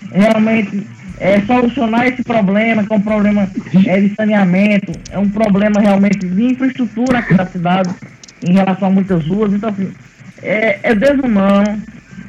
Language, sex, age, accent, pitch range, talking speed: Portuguese, male, 20-39, Brazilian, 185-235 Hz, 145 wpm